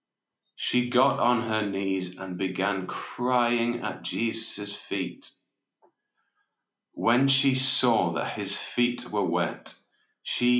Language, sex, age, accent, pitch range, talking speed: English, male, 30-49, British, 95-130 Hz, 115 wpm